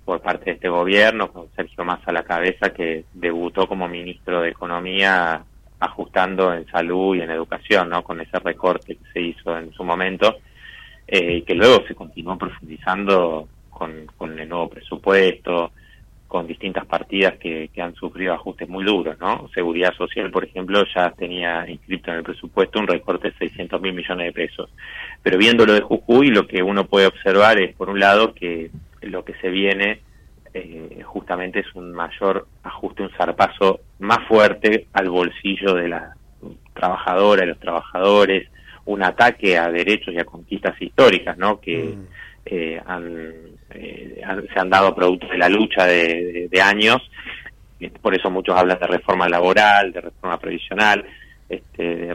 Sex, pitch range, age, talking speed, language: male, 85-95 Hz, 30-49, 165 wpm, Italian